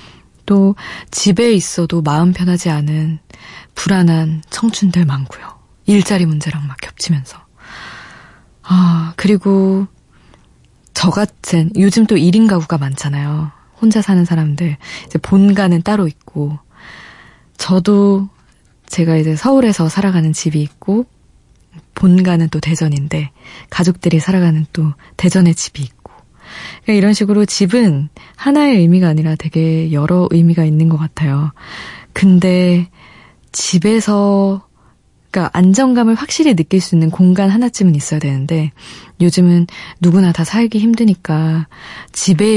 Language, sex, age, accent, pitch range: Korean, female, 20-39, native, 160-195 Hz